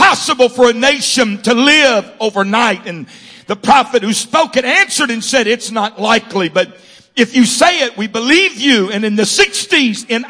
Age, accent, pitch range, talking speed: 60-79, American, 230-295 Hz, 180 wpm